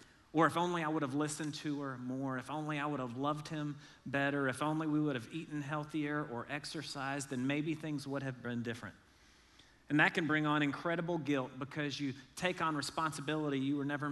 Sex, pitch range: male, 130-150 Hz